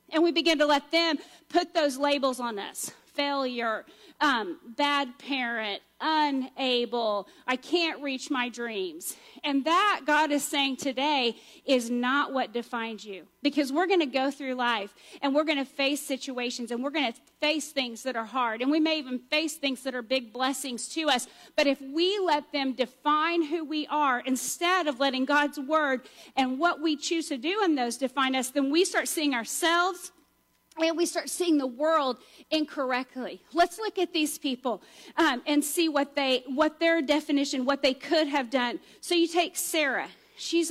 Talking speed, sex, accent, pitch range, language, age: 180 wpm, female, American, 260-325 Hz, English, 40-59